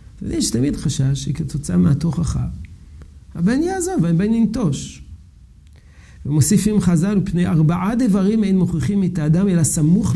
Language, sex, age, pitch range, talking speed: Hebrew, male, 50-69, 120-180 Hz, 125 wpm